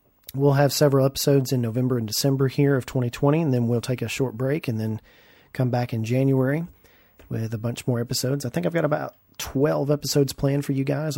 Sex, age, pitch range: male, 40-59, 120-145 Hz